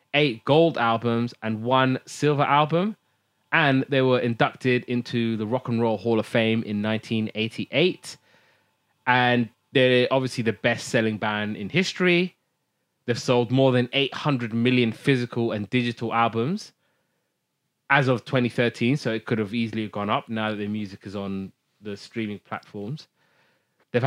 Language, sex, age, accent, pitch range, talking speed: English, male, 20-39, British, 115-135 Hz, 145 wpm